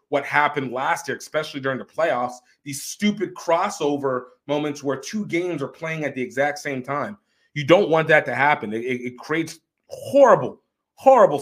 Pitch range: 125-185 Hz